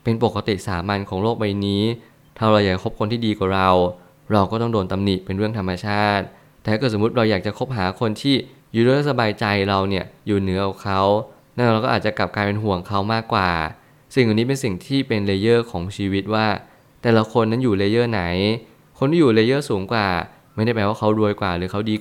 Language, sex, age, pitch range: Thai, male, 20-39, 100-115 Hz